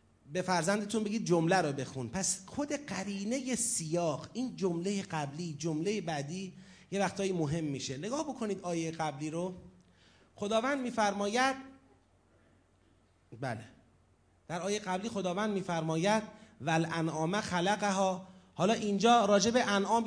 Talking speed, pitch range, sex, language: 120 wpm, 180-240 Hz, male, Persian